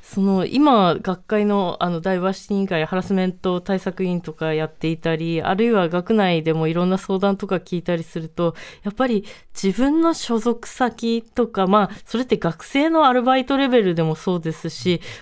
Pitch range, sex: 180-230 Hz, female